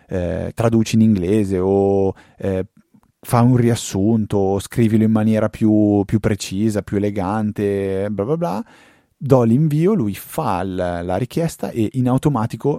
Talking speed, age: 145 wpm, 30-49